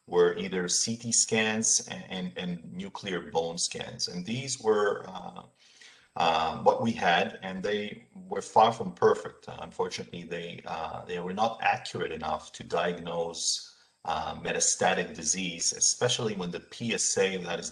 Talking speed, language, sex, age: 145 wpm, English, male, 40-59